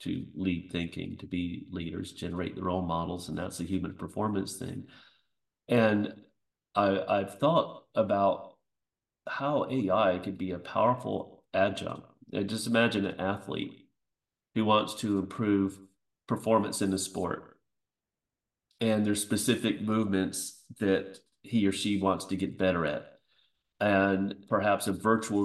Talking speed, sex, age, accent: 135 wpm, male, 40-59, American